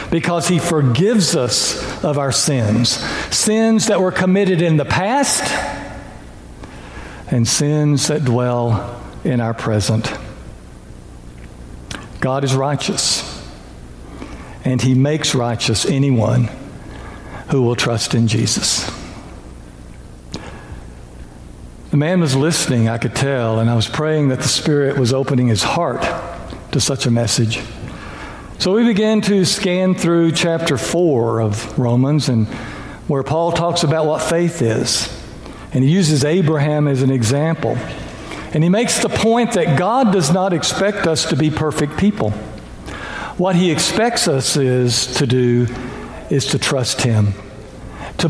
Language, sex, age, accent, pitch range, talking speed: English, male, 60-79, American, 115-170 Hz, 135 wpm